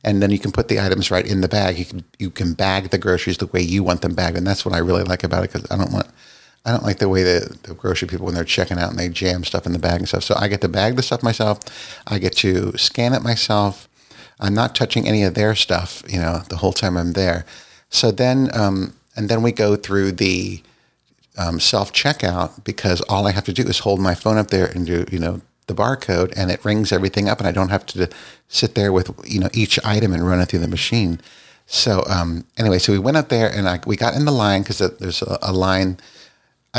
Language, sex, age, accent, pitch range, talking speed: English, male, 50-69, American, 90-110 Hz, 260 wpm